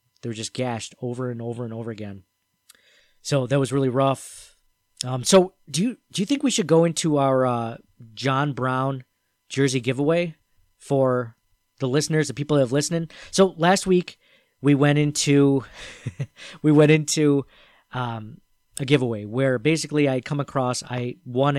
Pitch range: 125-155 Hz